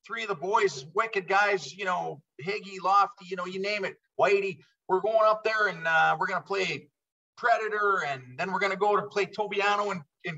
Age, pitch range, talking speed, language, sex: 30-49, 130-195 Hz, 210 wpm, English, male